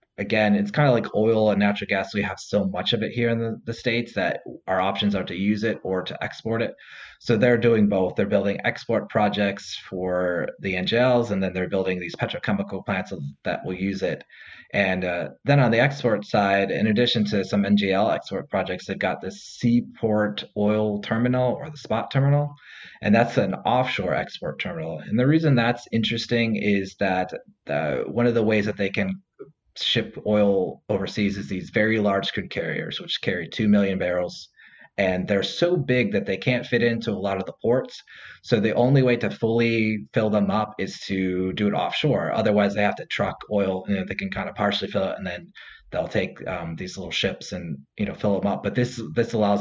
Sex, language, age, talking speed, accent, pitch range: male, English, 30-49, 210 wpm, American, 95-115 Hz